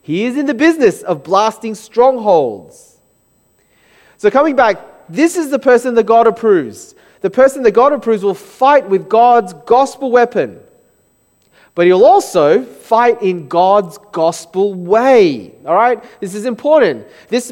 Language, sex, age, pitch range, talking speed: English, male, 30-49, 165-255 Hz, 140 wpm